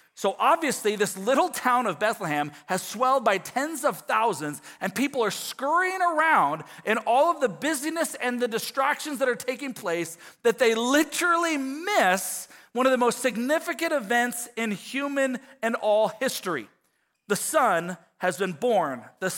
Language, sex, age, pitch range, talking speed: English, male, 40-59, 180-260 Hz, 160 wpm